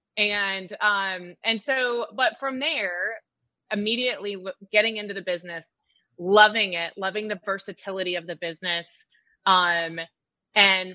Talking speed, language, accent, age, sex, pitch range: 120 wpm, English, American, 20-39, female, 170-215 Hz